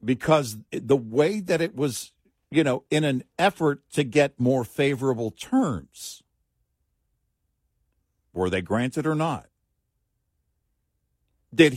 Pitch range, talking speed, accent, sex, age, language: 100-150 Hz, 110 wpm, American, male, 50-69, English